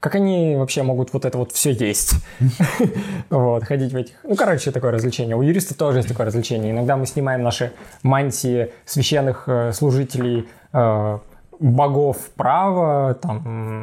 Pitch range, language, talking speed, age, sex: 120-160 Hz, Russian, 145 wpm, 20-39, male